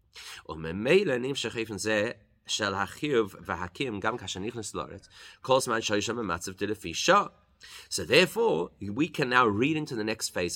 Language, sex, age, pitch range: English, male, 30-49, 95-140 Hz